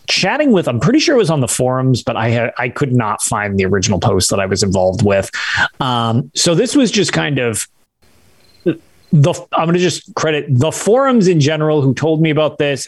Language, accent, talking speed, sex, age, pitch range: English, American, 215 wpm, male, 30-49, 115-165 Hz